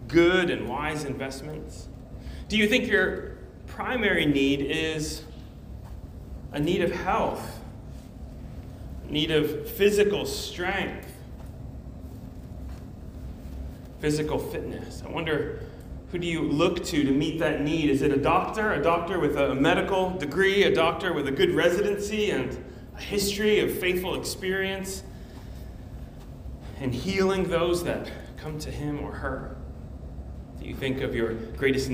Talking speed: 130 wpm